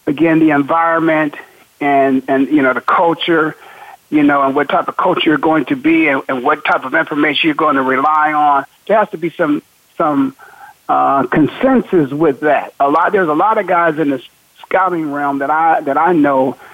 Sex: male